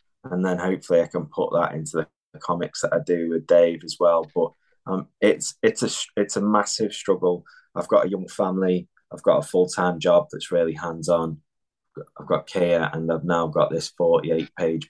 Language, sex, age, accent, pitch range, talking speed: English, male, 20-39, British, 85-90 Hz, 195 wpm